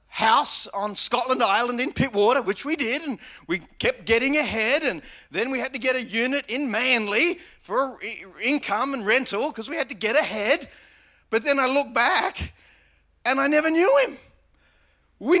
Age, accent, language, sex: 30-49, Australian, English, male